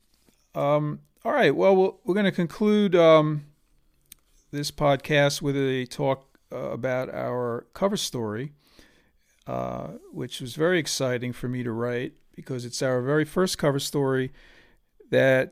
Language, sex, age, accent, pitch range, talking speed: English, male, 50-69, American, 120-140 Hz, 140 wpm